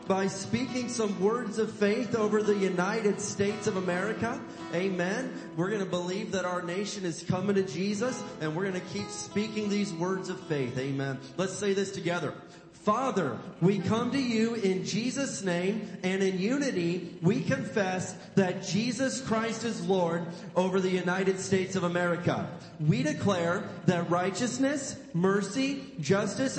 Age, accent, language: 40-59, American, English